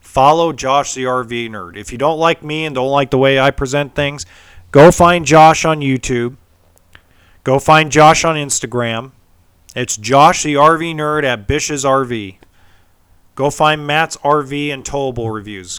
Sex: male